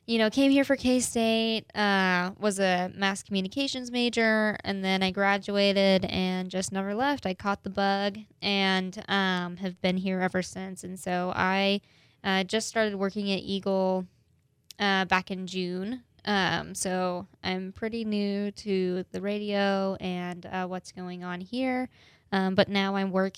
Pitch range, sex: 185-205 Hz, female